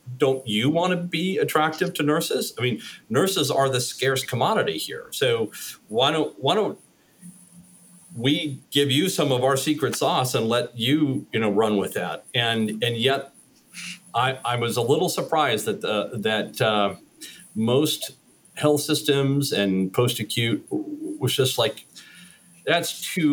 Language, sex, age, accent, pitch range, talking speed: English, male, 40-59, American, 105-145 Hz, 155 wpm